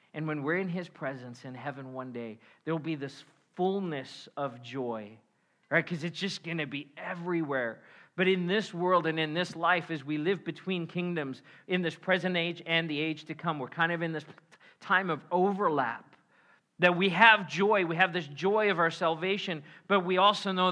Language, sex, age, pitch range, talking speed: English, male, 40-59, 160-195 Hz, 200 wpm